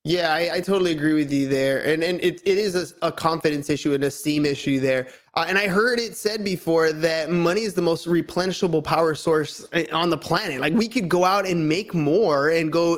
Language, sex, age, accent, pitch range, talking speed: English, male, 20-39, American, 170-215 Hz, 230 wpm